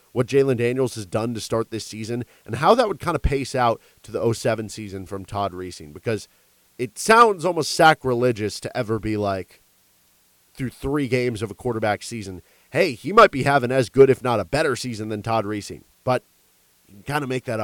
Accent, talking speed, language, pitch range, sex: American, 210 wpm, English, 100-130 Hz, male